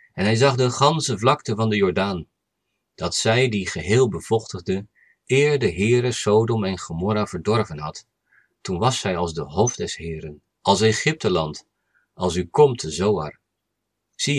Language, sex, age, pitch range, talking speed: Dutch, male, 50-69, 95-125 Hz, 160 wpm